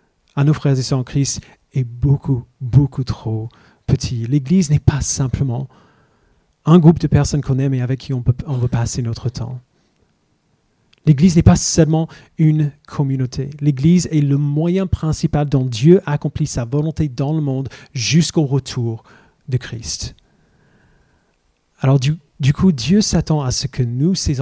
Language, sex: French, male